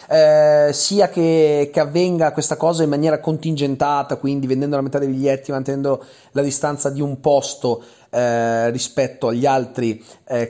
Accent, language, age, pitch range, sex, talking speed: native, Italian, 30-49, 135-180 Hz, male, 155 wpm